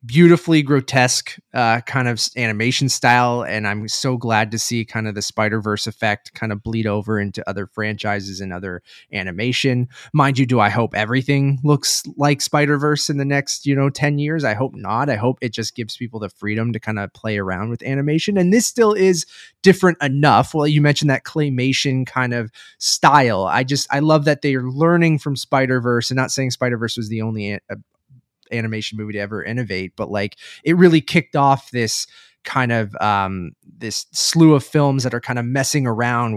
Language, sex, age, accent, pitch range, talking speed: English, male, 20-39, American, 110-150 Hz, 205 wpm